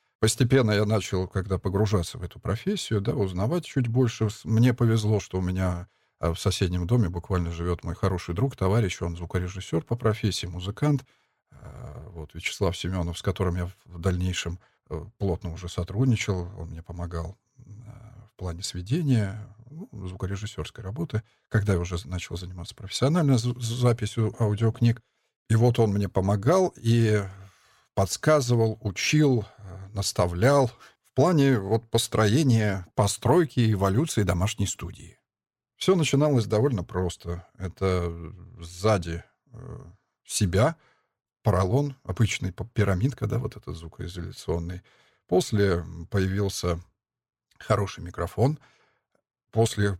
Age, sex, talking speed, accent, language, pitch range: 50-69, male, 115 wpm, native, Russian, 90-115 Hz